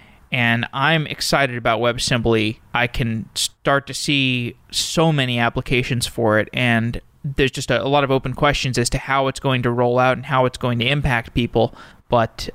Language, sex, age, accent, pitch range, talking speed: English, male, 20-39, American, 120-140 Hz, 190 wpm